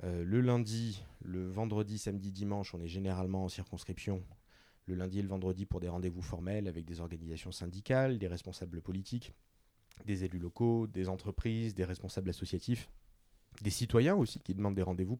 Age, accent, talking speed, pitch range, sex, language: 30-49, French, 170 wpm, 90-105 Hz, male, French